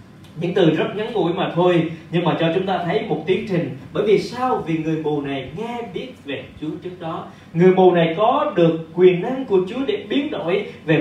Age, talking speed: 20-39, 230 wpm